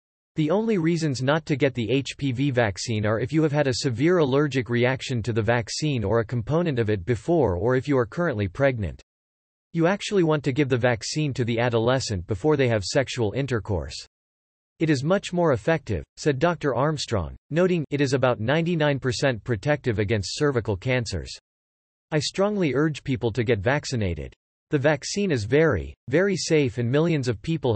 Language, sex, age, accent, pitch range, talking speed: English, male, 40-59, American, 115-150 Hz, 175 wpm